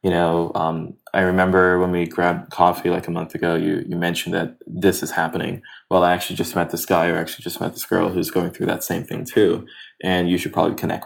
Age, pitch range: 20-39, 85-95 Hz